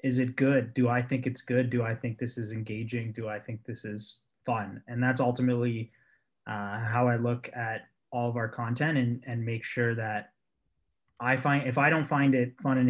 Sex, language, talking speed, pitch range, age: male, English, 215 wpm, 115-135 Hz, 20-39